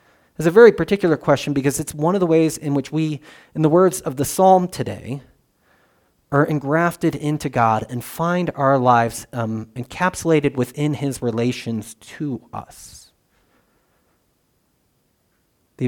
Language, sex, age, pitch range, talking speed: English, male, 30-49, 125-160 Hz, 140 wpm